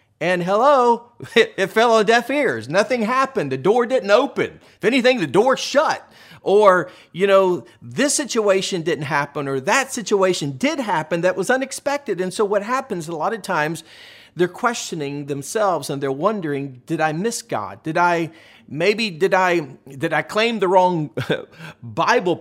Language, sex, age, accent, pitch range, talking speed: English, male, 40-59, American, 140-205 Hz, 170 wpm